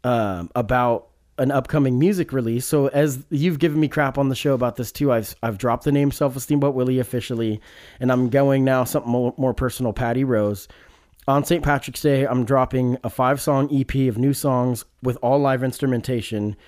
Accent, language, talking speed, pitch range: American, English, 190 wpm, 120-145 Hz